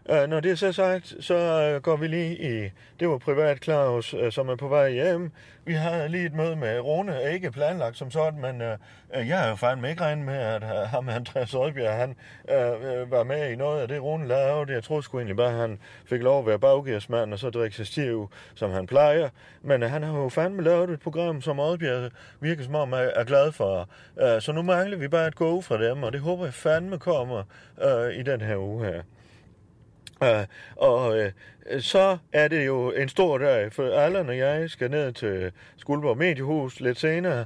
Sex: male